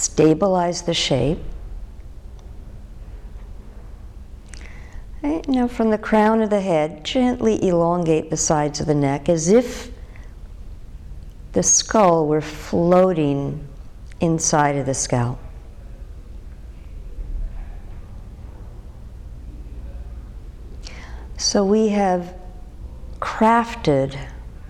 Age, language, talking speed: 60-79, English, 75 wpm